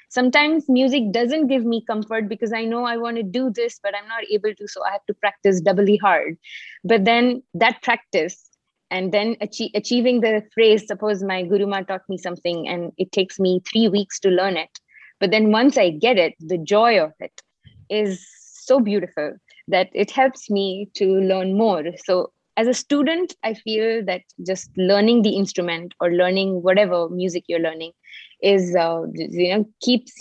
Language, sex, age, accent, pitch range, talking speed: English, female, 20-39, Indian, 185-225 Hz, 185 wpm